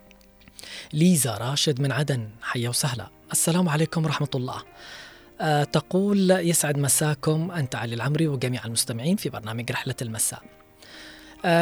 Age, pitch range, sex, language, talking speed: 20-39, 125-155 Hz, female, Arabic, 125 wpm